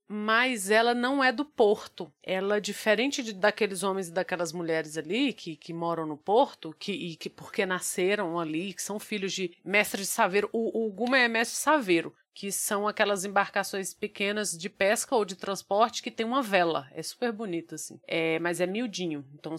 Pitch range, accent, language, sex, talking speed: 180-235 Hz, Brazilian, Portuguese, female, 195 wpm